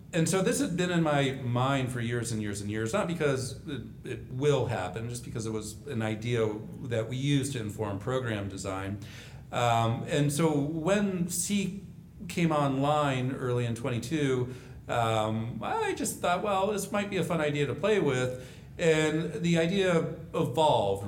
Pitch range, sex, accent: 110-150 Hz, male, American